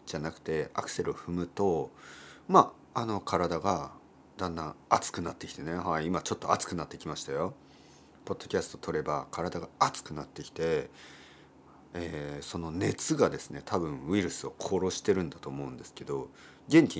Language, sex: Japanese, male